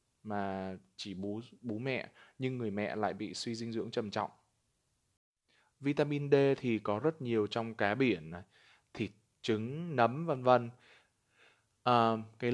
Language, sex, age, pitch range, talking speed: Vietnamese, male, 20-39, 105-125 Hz, 155 wpm